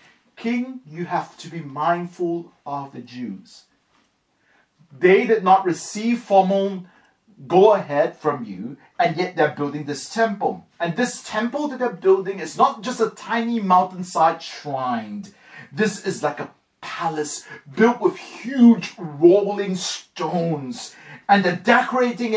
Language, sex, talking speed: English, male, 135 wpm